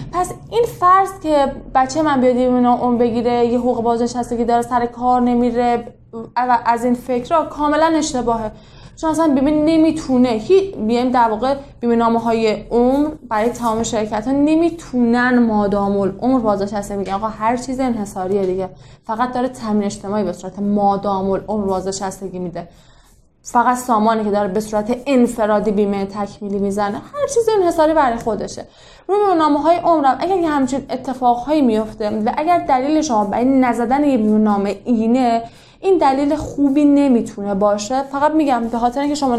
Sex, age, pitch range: female, 10-29, 215-280 Hz